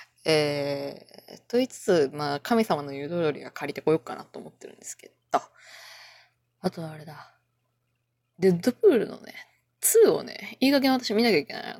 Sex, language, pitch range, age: female, Japanese, 150-245 Hz, 20-39